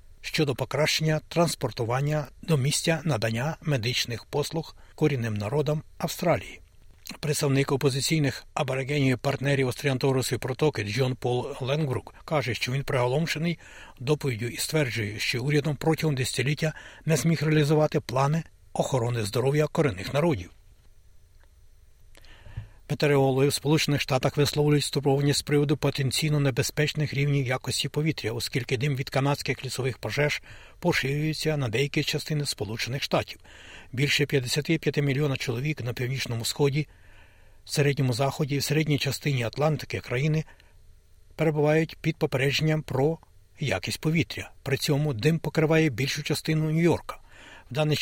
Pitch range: 120-150 Hz